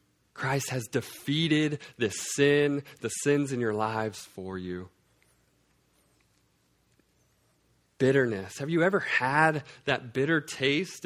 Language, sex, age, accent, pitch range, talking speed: English, male, 20-39, American, 130-185 Hz, 110 wpm